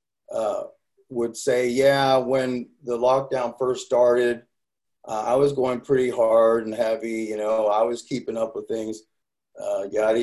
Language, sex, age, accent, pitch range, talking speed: English, male, 40-59, American, 110-135 Hz, 160 wpm